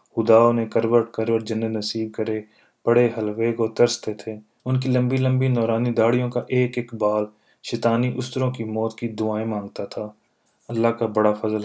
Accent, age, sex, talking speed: native, 30-49, male, 170 wpm